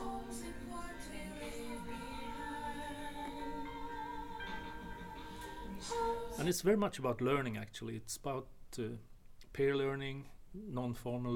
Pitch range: 105-130 Hz